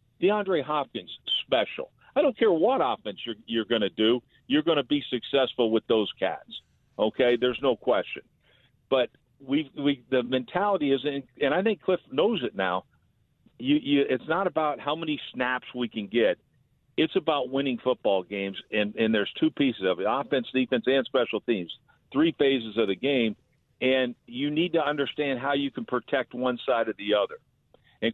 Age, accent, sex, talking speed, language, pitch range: 50-69, American, male, 185 wpm, English, 115-145 Hz